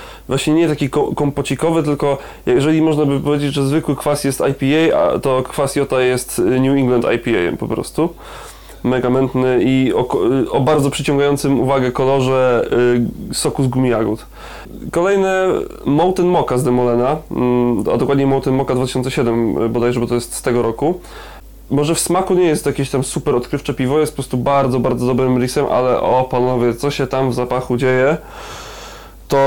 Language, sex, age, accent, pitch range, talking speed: Polish, male, 20-39, native, 125-145 Hz, 165 wpm